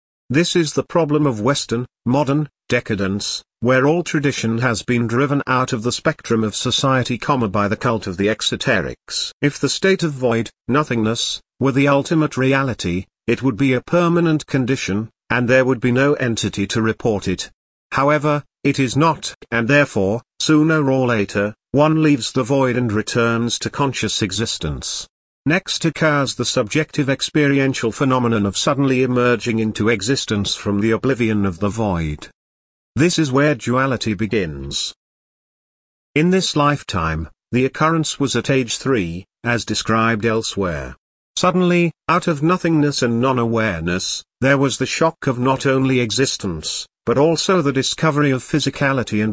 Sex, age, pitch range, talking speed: male, 50-69, 110-140 Hz, 150 wpm